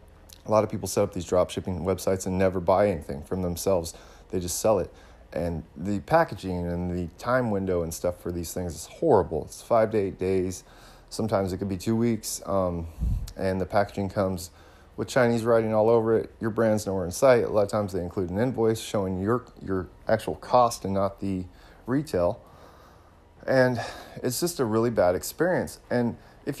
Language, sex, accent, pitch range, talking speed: English, male, American, 90-110 Hz, 195 wpm